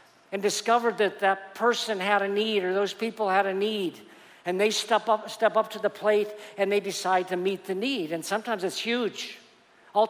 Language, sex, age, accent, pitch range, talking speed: English, male, 50-69, American, 180-220 Hz, 210 wpm